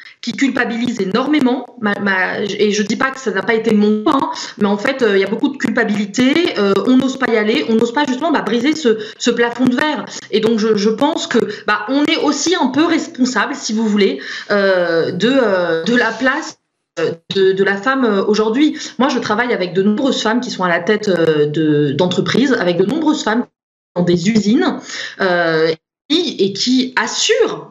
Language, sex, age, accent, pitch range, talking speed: French, female, 20-39, French, 210-275 Hz, 195 wpm